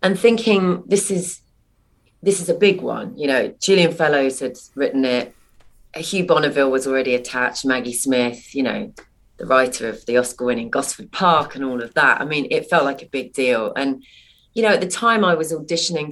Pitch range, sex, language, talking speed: 135-170 Hz, female, English, 195 wpm